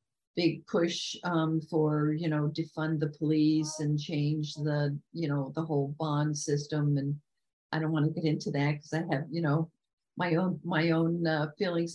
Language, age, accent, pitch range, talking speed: English, 50-69, American, 155-175 Hz, 185 wpm